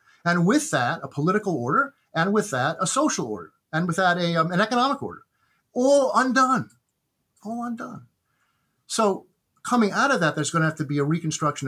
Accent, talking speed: American, 190 wpm